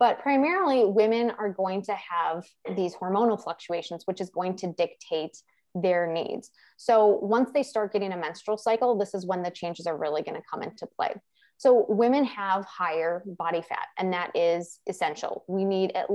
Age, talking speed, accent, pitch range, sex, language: 20-39, 185 wpm, American, 170-205 Hz, female, English